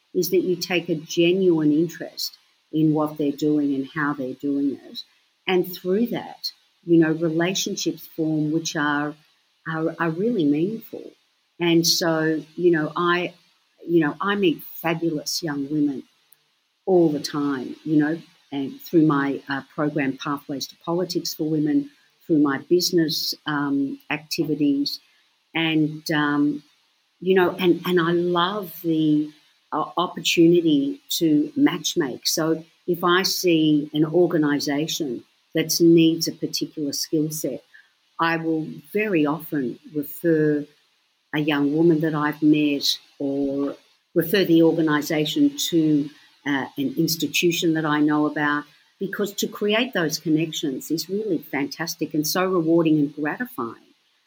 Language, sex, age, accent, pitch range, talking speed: English, female, 50-69, Australian, 150-175 Hz, 135 wpm